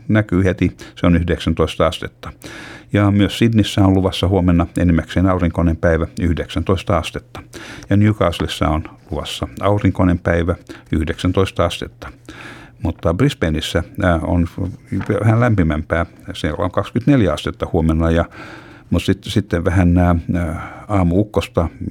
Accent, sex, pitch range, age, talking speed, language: native, male, 85-100 Hz, 60-79, 110 wpm, Finnish